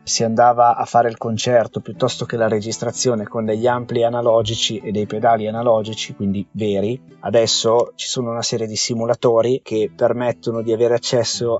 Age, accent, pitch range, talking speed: 30-49, native, 110-125 Hz, 165 wpm